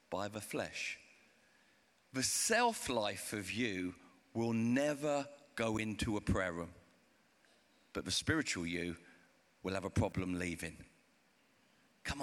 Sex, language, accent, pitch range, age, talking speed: male, English, British, 105-135 Hz, 50-69, 115 wpm